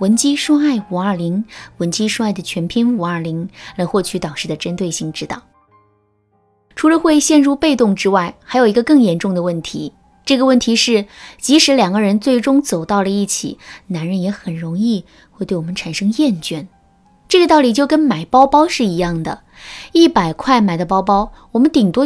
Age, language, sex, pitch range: 20-39, Chinese, female, 180-260 Hz